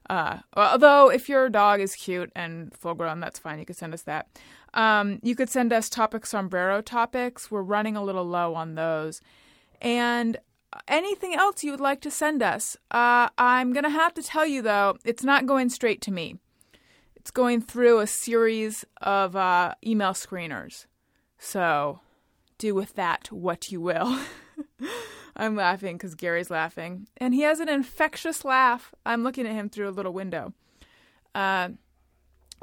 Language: English